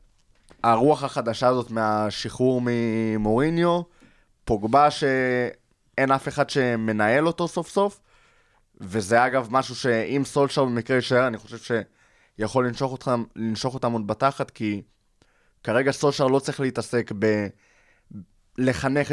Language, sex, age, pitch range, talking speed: Hebrew, male, 20-39, 115-145 Hz, 110 wpm